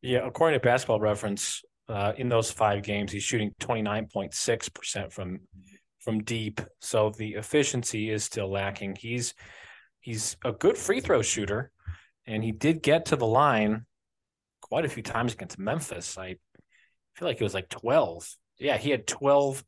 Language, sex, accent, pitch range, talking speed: English, male, American, 100-120 Hz, 160 wpm